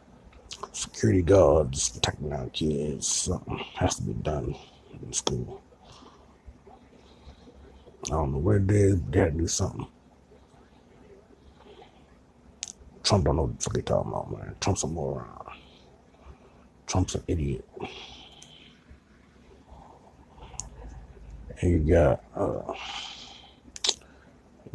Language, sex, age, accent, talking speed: English, male, 60-79, American, 100 wpm